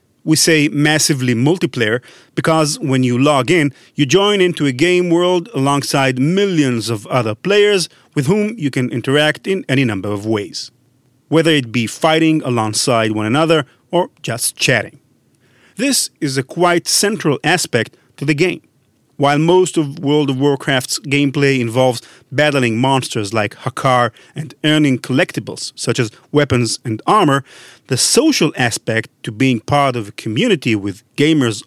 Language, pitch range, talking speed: English, 125-165 Hz, 150 wpm